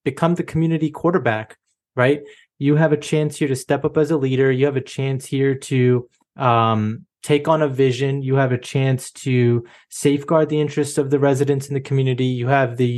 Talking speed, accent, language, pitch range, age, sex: 205 wpm, American, English, 125-145 Hz, 20-39, male